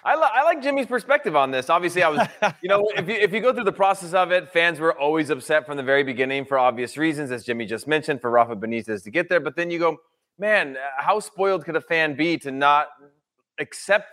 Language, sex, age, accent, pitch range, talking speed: English, male, 30-49, American, 145-175 Hz, 245 wpm